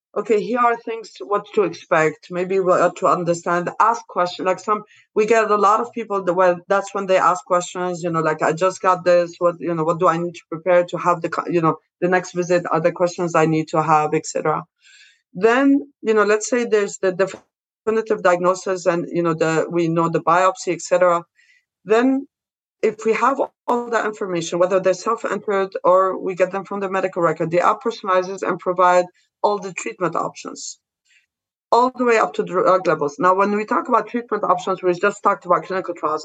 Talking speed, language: 210 wpm, English